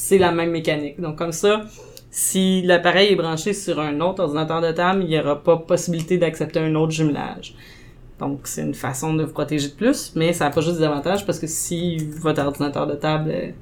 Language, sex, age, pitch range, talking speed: French, female, 20-39, 155-195 Hz, 220 wpm